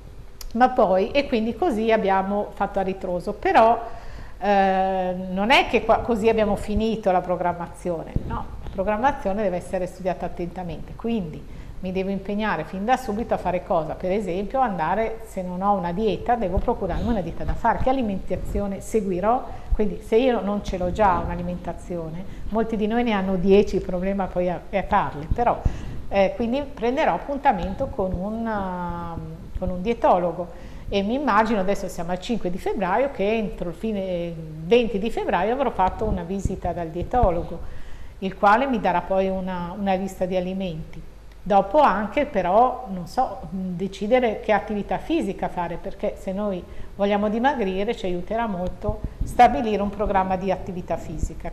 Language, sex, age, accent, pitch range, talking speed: Italian, female, 50-69, native, 185-225 Hz, 165 wpm